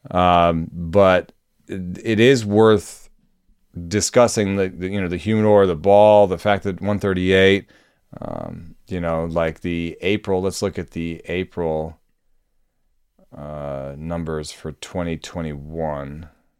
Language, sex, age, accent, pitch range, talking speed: English, male, 30-49, American, 80-100 Hz, 125 wpm